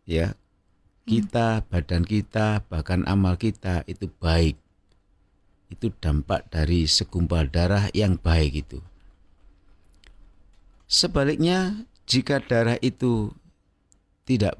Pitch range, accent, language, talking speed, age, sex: 85-110 Hz, native, Indonesian, 90 wpm, 50-69, male